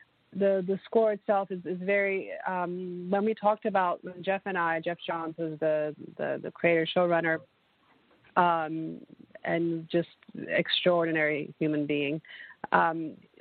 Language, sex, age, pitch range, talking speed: English, female, 30-49, 160-185 Hz, 135 wpm